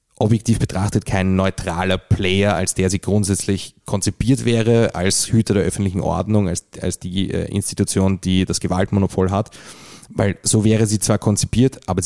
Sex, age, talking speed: male, 30-49, 155 wpm